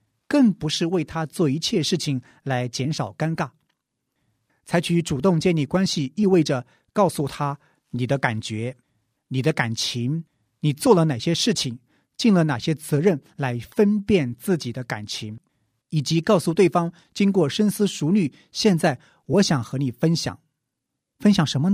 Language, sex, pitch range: Chinese, male, 130-180 Hz